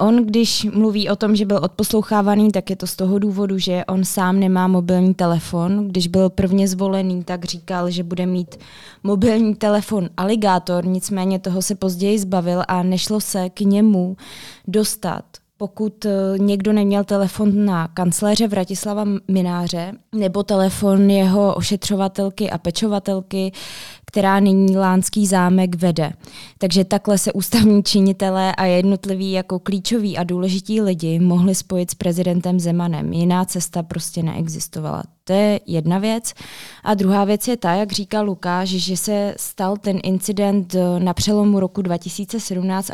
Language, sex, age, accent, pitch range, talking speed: Czech, female, 20-39, native, 180-205 Hz, 145 wpm